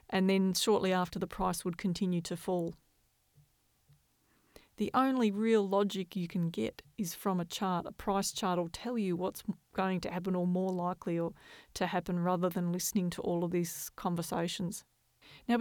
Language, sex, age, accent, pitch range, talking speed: English, female, 30-49, Australian, 175-200 Hz, 175 wpm